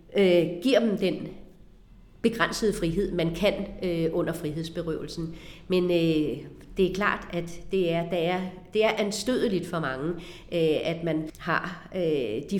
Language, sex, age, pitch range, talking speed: Danish, female, 40-59, 165-195 Hz, 115 wpm